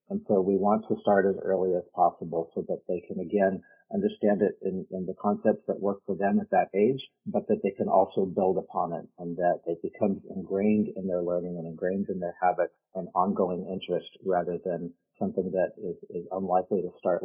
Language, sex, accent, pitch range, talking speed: English, male, American, 95-125 Hz, 210 wpm